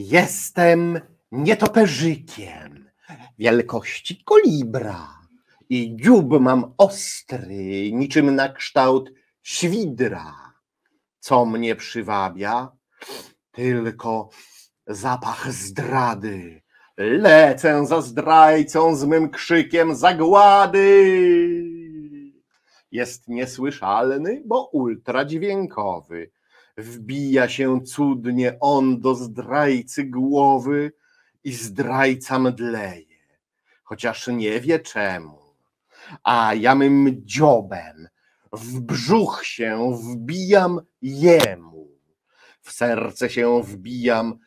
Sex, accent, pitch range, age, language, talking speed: male, native, 115-155 Hz, 50-69, Polish, 75 wpm